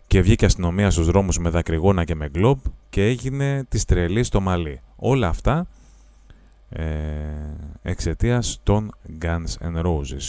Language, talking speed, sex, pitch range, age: Greek, 140 wpm, male, 80-105 Hz, 30-49